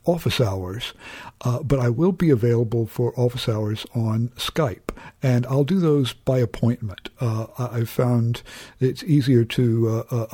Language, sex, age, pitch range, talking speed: English, male, 60-79, 115-130 Hz, 150 wpm